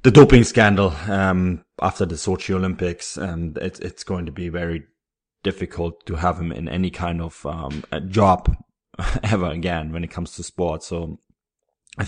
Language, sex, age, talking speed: English, male, 20-39, 175 wpm